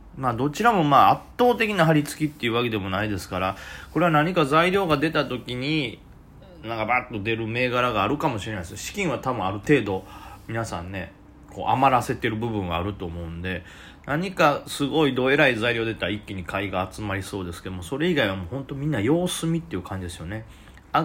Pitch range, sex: 95-140 Hz, male